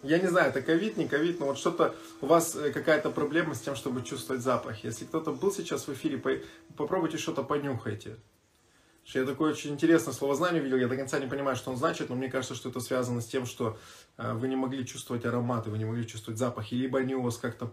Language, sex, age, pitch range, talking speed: Russian, male, 20-39, 115-150 Hz, 225 wpm